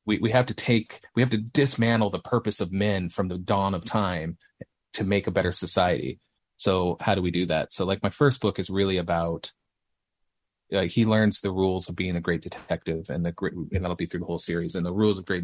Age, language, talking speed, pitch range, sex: 30-49, English, 240 wpm, 85-105 Hz, male